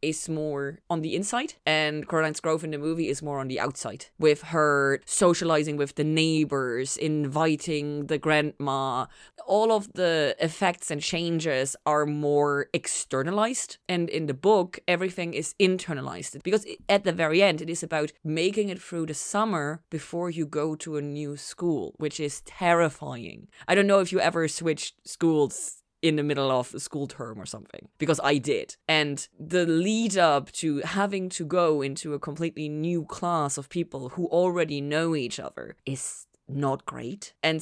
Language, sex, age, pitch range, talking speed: English, female, 20-39, 150-180 Hz, 170 wpm